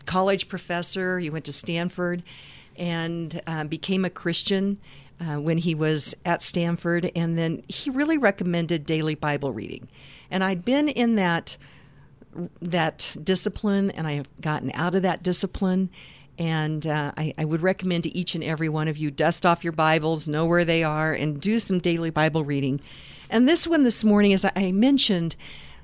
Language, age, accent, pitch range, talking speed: English, 50-69, American, 155-195 Hz, 175 wpm